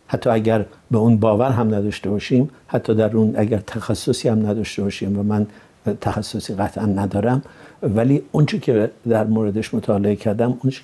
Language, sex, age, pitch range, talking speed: Persian, male, 60-79, 105-120 Hz, 165 wpm